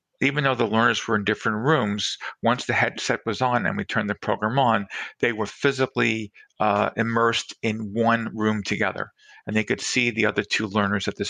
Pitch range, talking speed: 100-115 Hz, 200 wpm